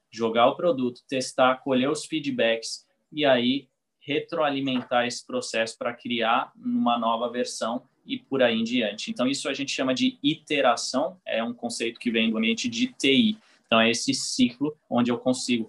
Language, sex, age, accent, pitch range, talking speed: Portuguese, male, 20-39, Brazilian, 120-160 Hz, 170 wpm